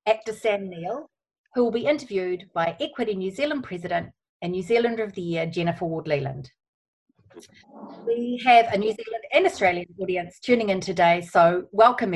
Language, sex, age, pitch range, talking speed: English, female, 30-49, 175-225 Hz, 165 wpm